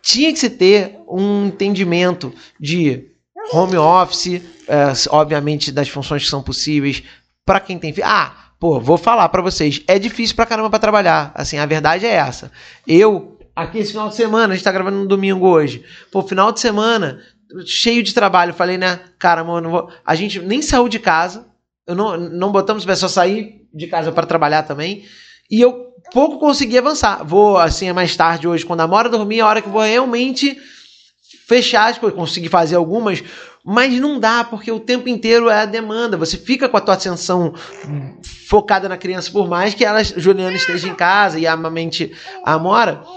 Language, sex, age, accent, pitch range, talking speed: Portuguese, male, 20-39, Brazilian, 170-230 Hz, 190 wpm